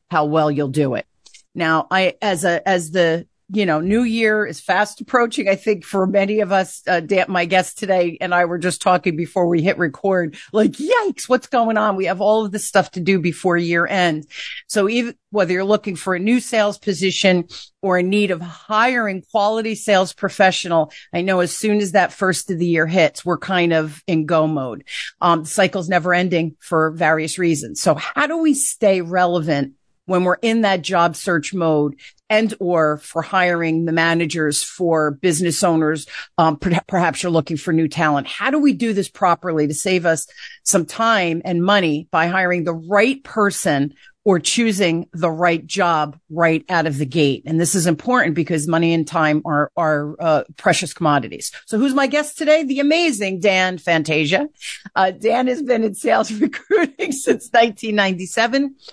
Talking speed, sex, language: 185 wpm, female, English